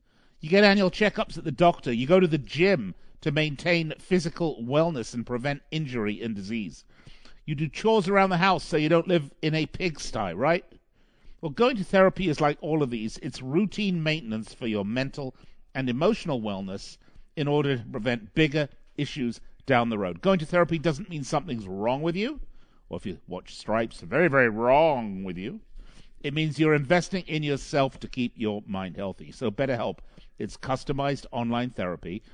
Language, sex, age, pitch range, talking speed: English, male, 50-69, 115-175 Hz, 185 wpm